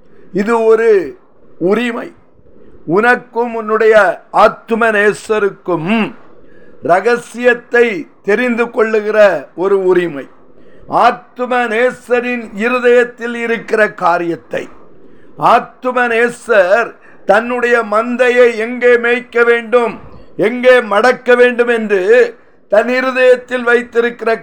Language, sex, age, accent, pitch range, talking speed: Tamil, male, 50-69, native, 225-250 Hz, 70 wpm